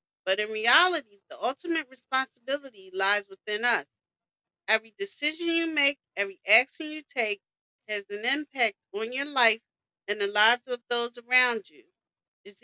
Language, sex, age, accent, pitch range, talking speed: English, female, 40-59, American, 215-305 Hz, 145 wpm